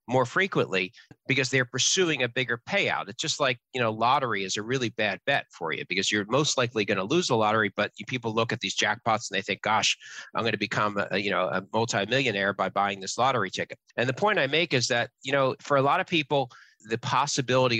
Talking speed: 240 wpm